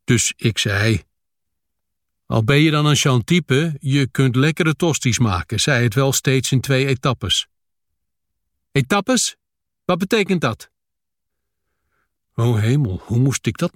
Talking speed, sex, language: 135 wpm, male, Dutch